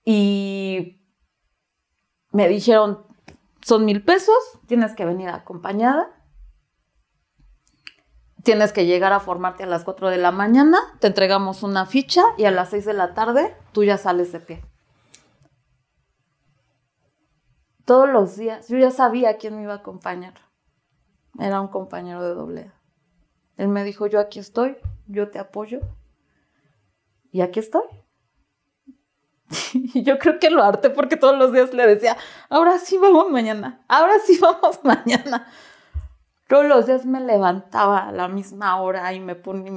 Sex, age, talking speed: female, 30-49, 145 wpm